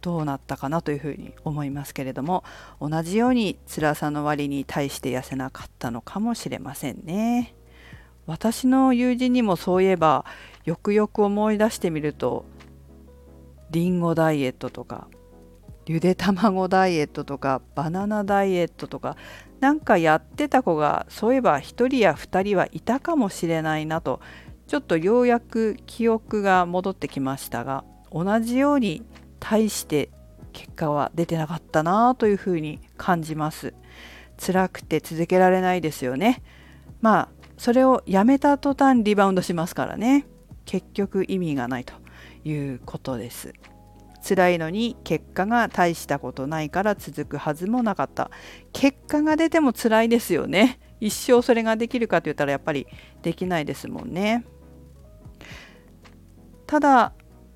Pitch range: 135-215 Hz